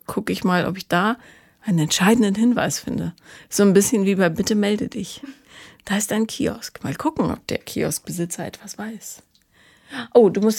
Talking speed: 180 wpm